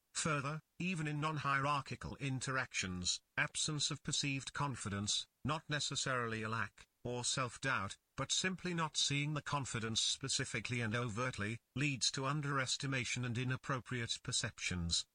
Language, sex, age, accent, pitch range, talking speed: English, male, 50-69, British, 110-145 Hz, 120 wpm